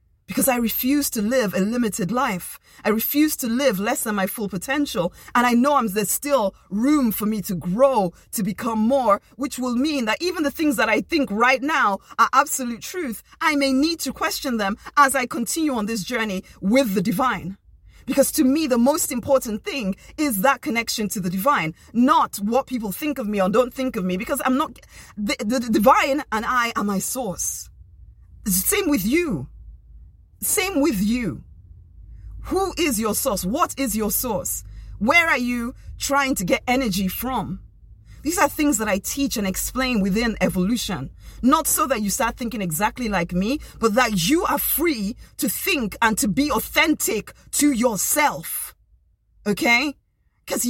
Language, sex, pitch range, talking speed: English, female, 205-280 Hz, 180 wpm